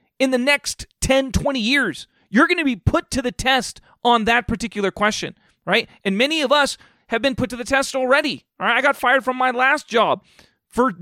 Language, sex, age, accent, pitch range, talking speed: English, male, 30-49, American, 195-265 Hz, 220 wpm